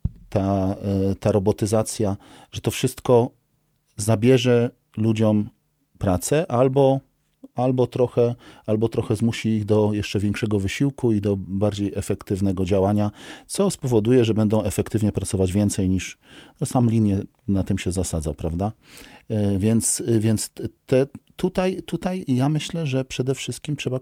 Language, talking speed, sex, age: Polish, 125 wpm, male, 40-59